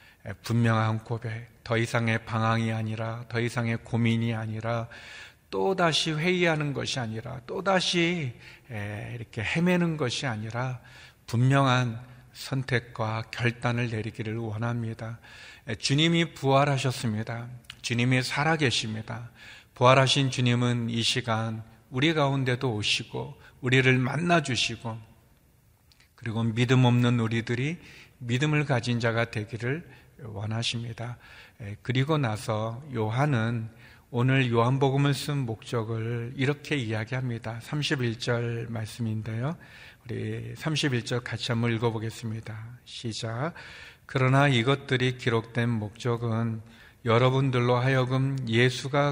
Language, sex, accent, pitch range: Korean, male, native, 115-130 Hz